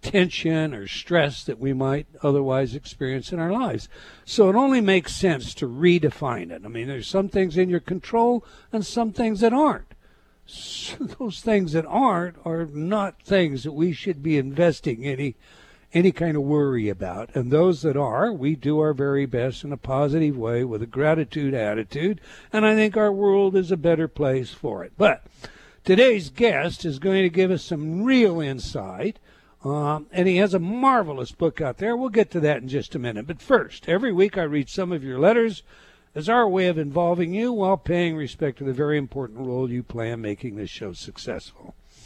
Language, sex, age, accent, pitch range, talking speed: English, male, 60-79, American, 140-190 Hz, 195 wpm